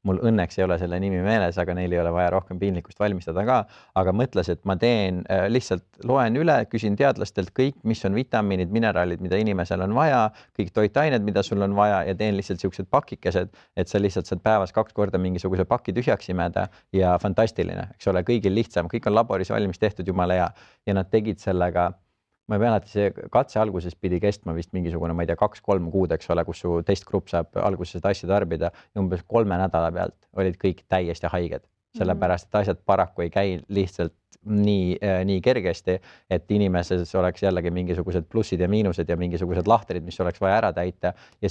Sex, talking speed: male, 190 wpm